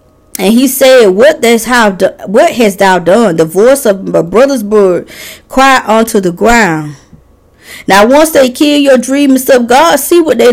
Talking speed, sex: 185 wpm, female